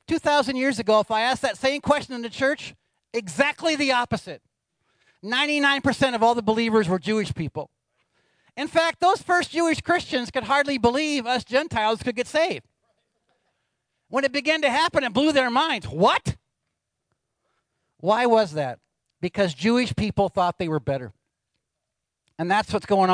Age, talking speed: 50-69, 160 wpm